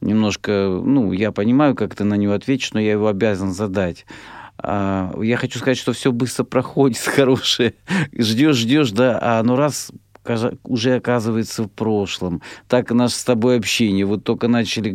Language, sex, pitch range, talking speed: Russian, male, 95-120 Hz, 155 wpm